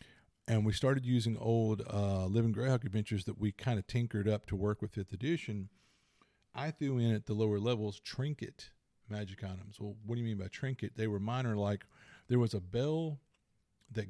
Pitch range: 105-125 Hz